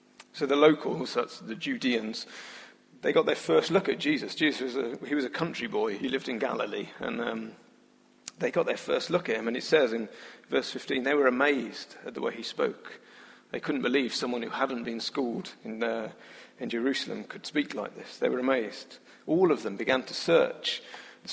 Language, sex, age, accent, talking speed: English, male, 40-59, British, 210 wpm